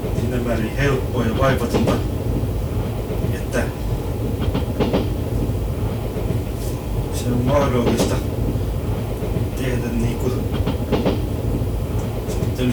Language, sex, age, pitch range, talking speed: Finnish, male, 30-49, 105-125 Hz, 50 wpm